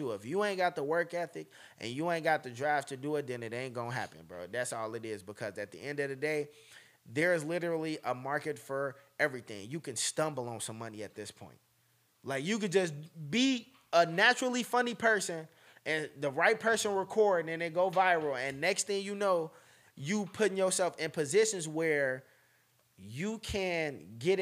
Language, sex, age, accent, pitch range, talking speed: English, male, 20-39, American, 130-180 Hz, 200 wpm